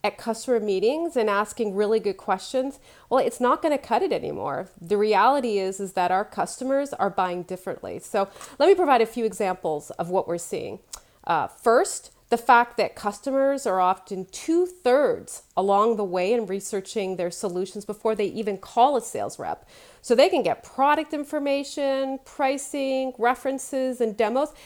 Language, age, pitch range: English, 40-59, 190-270 Hz